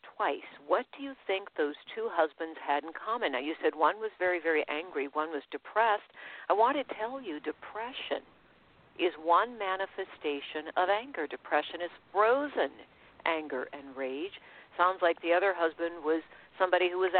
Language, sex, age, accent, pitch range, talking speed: English, female, 60-79, American, 160-235 Hz, 170 wpm